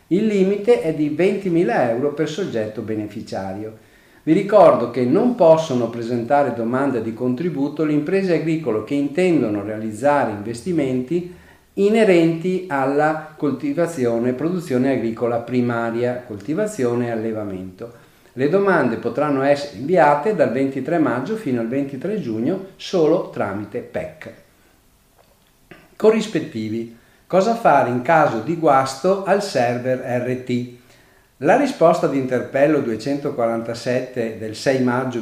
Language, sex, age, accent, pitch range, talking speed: Italian, male, 50-69, native, 115-165 Hz, 115 wpm